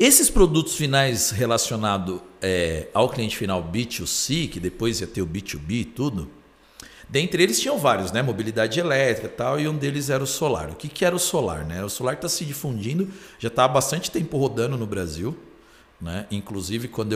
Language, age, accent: Portuguese, 50-69, Brazilian